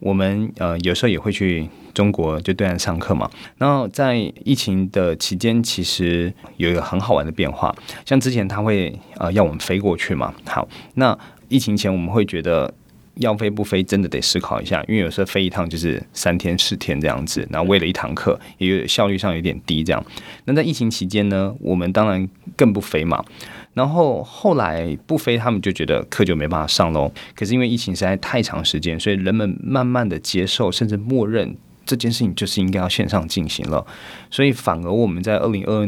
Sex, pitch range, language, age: male, 85-110 Hz, Chinese, 20-39